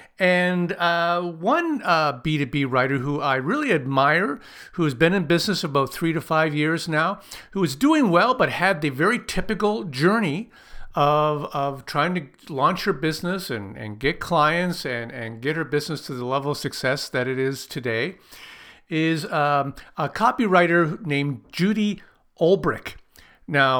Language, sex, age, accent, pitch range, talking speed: English, male, 50-69, American, 135-175 Hz, 160 wpm